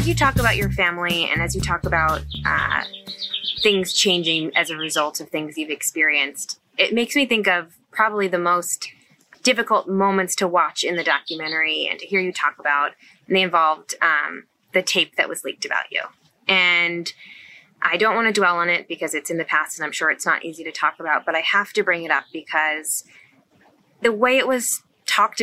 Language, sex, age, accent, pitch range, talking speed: English, female, 20-39, American, 155-185 Hz, 205 wpm